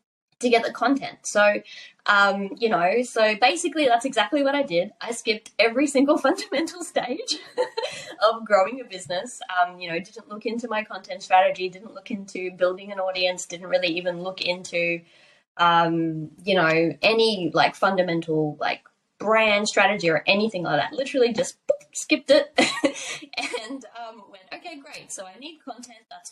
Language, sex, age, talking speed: English, female, 20-39, 165 wpm